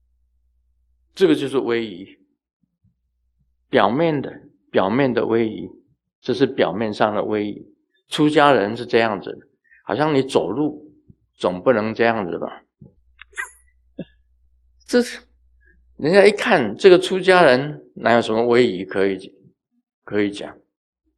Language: Chinese